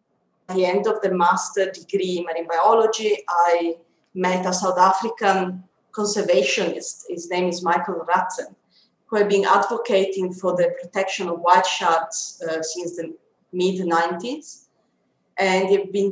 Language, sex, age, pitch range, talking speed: English, female, 30-49, 175-200 Hz, 140 wpm